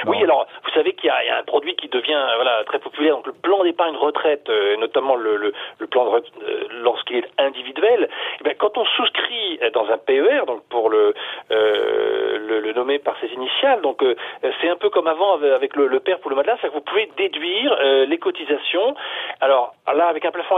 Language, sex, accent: French, male, French